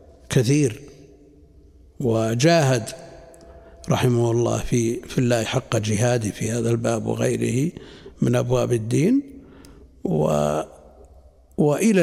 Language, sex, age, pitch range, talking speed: Arabic, male, 60-79, 115-135 Hz, 90 wpm